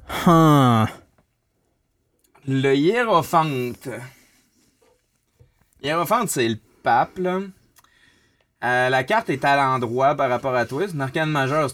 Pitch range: 120-145 Hz